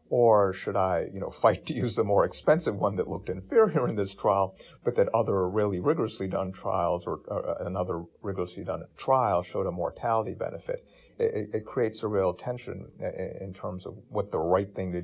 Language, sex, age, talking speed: English, male, 50-69, 195 wpm